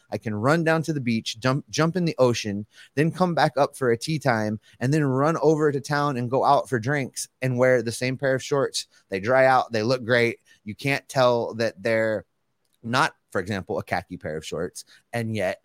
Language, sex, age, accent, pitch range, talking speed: English, male, 30-49, American, 105-135 Hz, 225 wpm